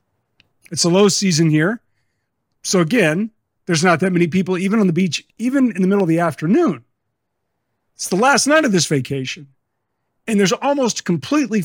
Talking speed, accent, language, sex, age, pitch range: 175 wpm, American, English, male, 50-69, 135-200 Hz